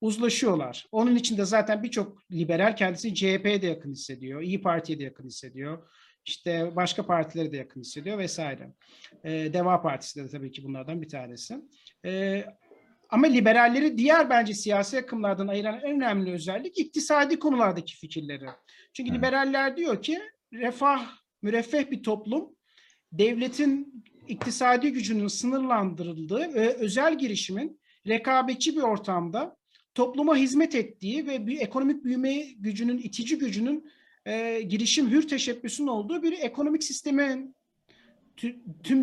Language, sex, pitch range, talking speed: Turkish, male, 195-265 Hz, 130 wpm